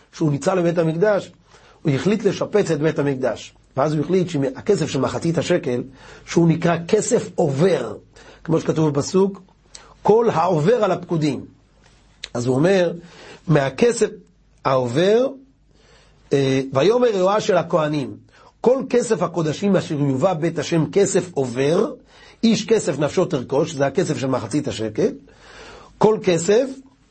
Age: 40-59